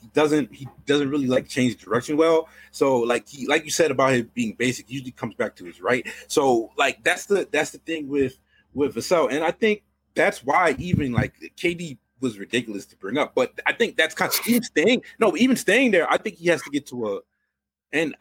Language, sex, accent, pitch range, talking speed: English, male, American, 130-170 Hz, 225 wpm